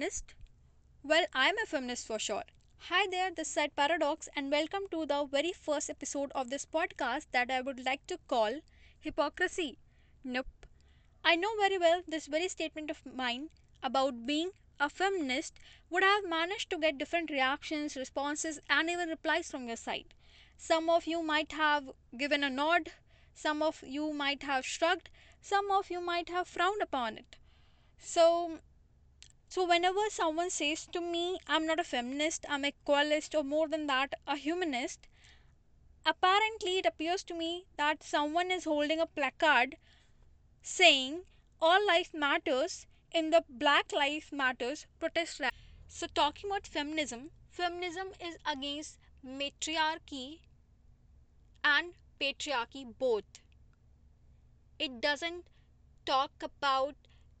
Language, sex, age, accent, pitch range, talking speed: English, female, 20-39, Indian, 285-345 Hz, 140 wpm